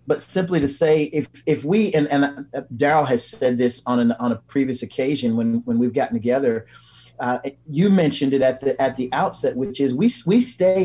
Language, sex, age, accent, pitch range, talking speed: English, male, 40-59, American, 125-170 Hz, 210 wpm